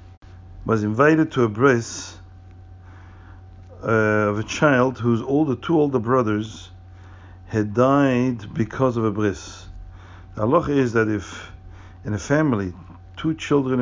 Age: 50-69